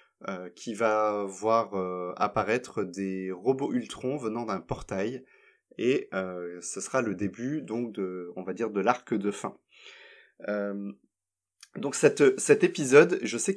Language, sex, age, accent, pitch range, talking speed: French, male, 20-39, French, 100-130 Hz, 150 wpm